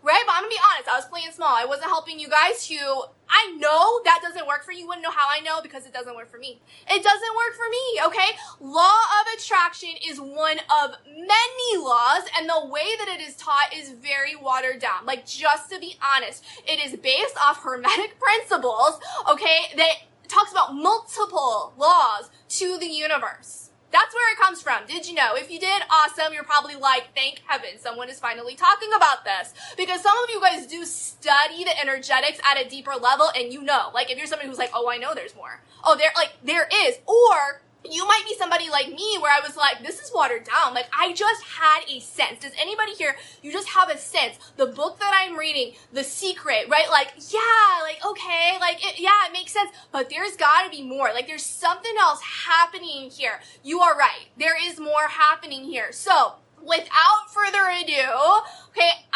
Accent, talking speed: American, 205 wpm